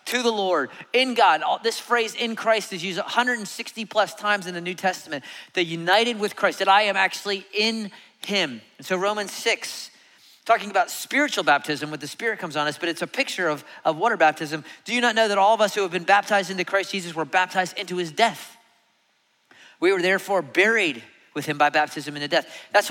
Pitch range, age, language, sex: 175-225 Hz, 30-49, English, male